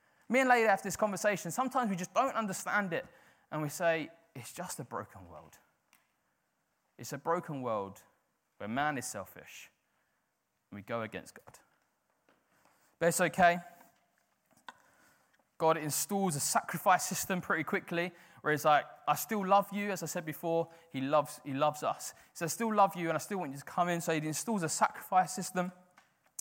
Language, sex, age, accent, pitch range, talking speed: English, male, 20-39, British, 140-190 Hz, 180 wpm